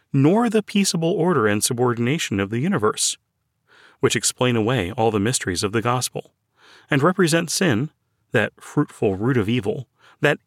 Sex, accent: male, American